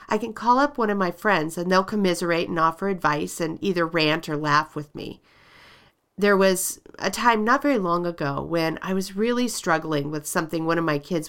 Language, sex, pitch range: English, female, 160-220 Hz